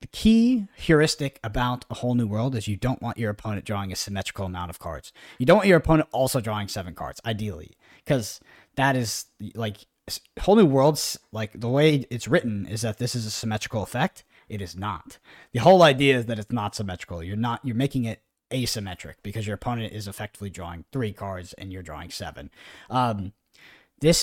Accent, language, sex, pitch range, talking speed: American, English, male, 95-125 Hz, 200 wpm